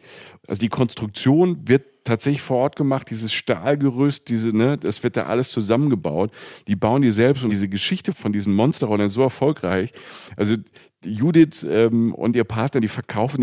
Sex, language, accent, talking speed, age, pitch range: male, German, German, 170 wpm, 40-59, 100-130 Hz